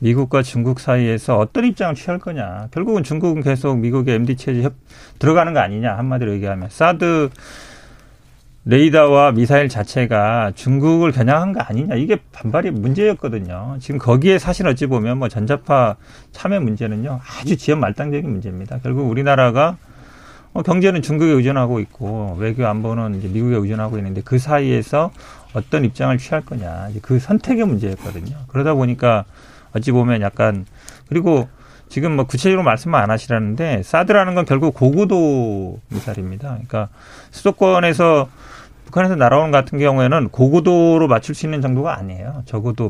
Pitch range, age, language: 110-150 Hz, 40-59, Korean